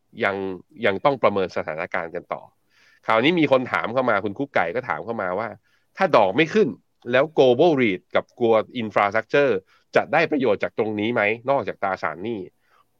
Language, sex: Thai, male